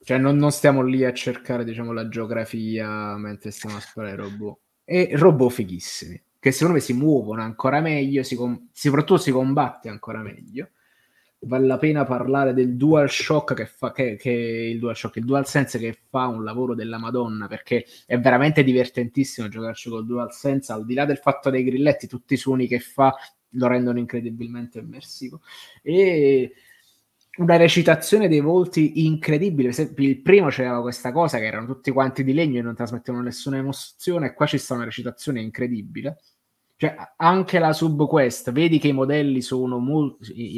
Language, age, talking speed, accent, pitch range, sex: Italian, 20-39, 175 wpm, native, 120-145 Hz, male